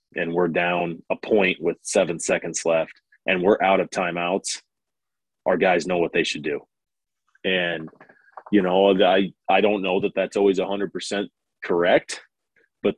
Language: English